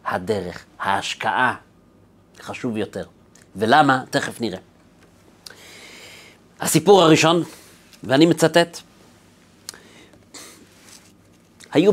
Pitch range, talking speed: 115-155 Hz, 60 wpm